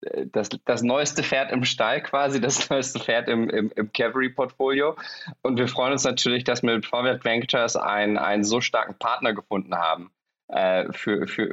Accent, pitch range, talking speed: German, 110-130 Hz, 170 wpm